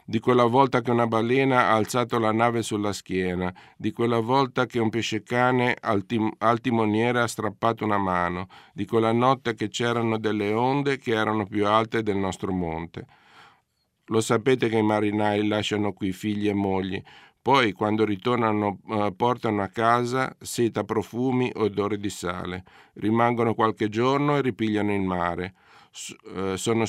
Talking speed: 150 wpm